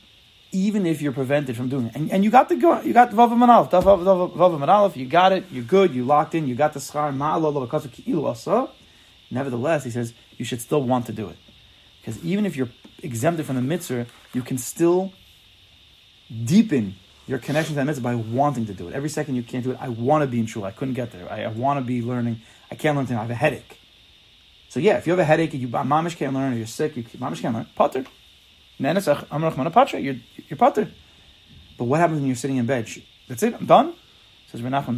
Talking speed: 225 wpm